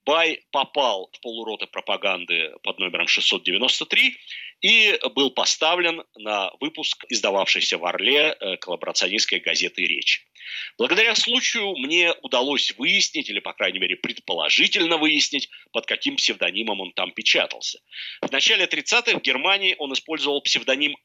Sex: male